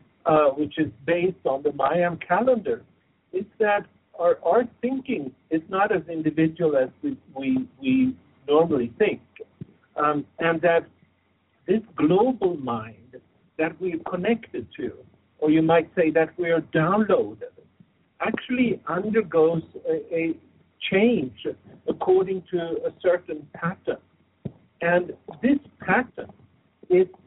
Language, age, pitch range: English, 60-79, 160-230 Hz